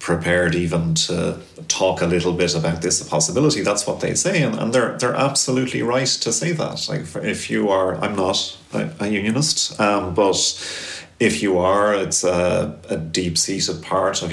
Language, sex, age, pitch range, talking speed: English, male, 40-59, 85-100 Hz, 175 wpm